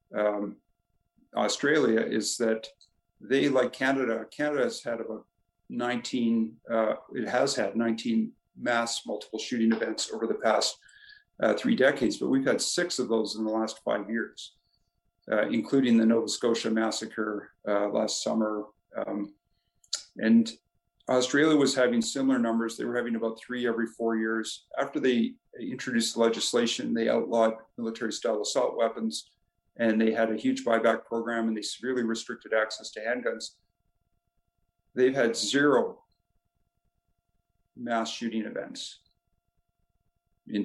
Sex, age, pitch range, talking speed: male, 50-69, 105-120 Hz, 135 wpm